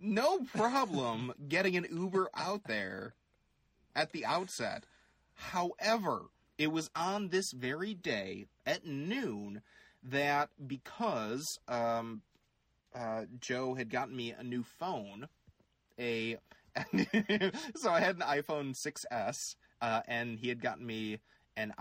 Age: 30-49